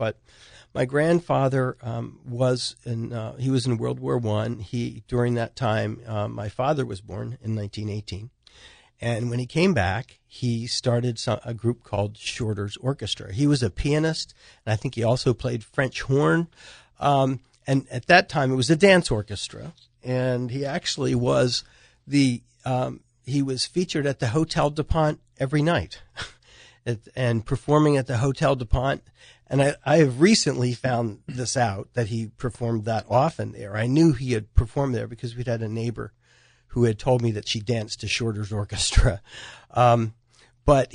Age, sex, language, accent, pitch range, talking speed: 50-69, male, English, American, 115-145 Hz, 170 wpm